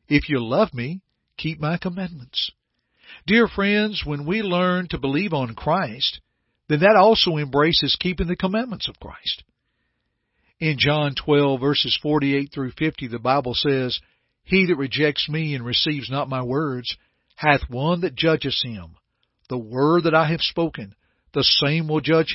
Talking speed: 160 wpm